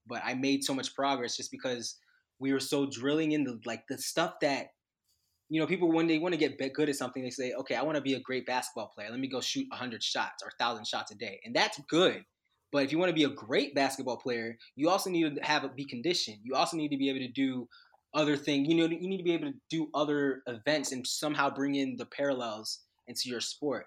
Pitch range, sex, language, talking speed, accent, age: 115-145 Hz, male, English, 255 wpm, American, 20-39